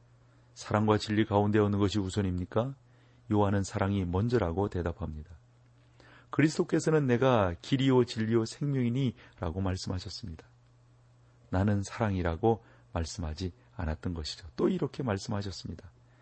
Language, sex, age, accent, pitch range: Korean, male, 40-59, native, 95-120 Hz